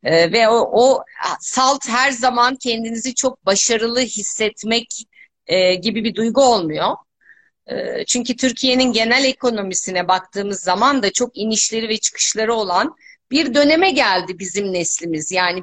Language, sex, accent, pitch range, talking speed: Turkish, female, native, 185-275 Hz, 135 wpm